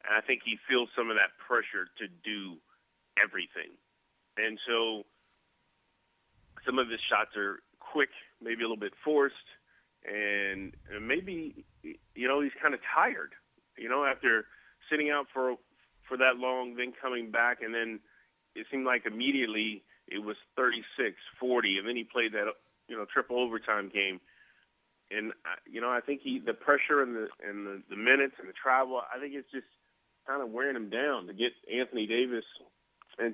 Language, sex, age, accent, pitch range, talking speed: English, male, 30-49, American, 110-130 Hz, 175 wpm